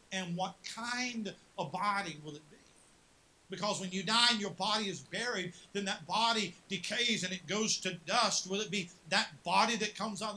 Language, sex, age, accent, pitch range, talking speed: English, male, 50-69, American, 195-245 Hz, 195 wpm